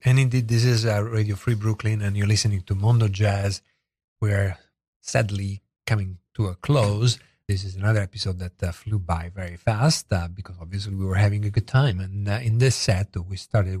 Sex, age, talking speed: male, 40-59, 200 wpm